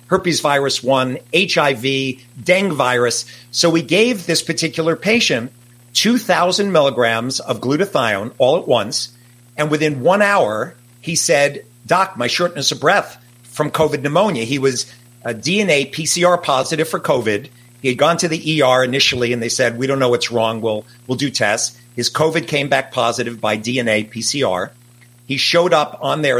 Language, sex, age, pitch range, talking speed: English, male, 50-69, 120-160 Hz, 170 wpm